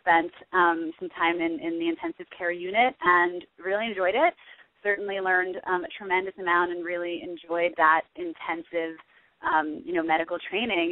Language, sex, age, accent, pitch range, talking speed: English, female, 20-39, American, 170-200 Hz, 165 wpm